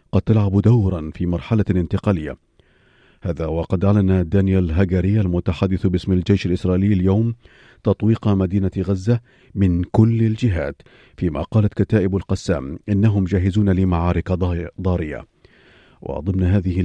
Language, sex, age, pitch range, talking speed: Arabic, male, 40-59, 90-105 Hz, 115 wpm